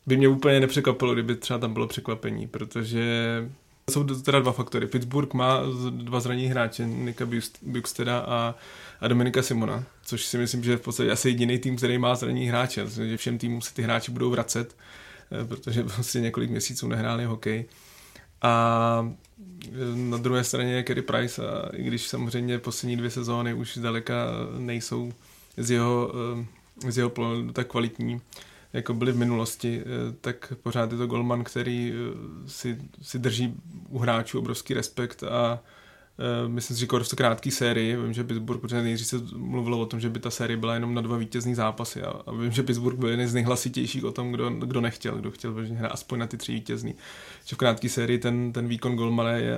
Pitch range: 115-125 Hz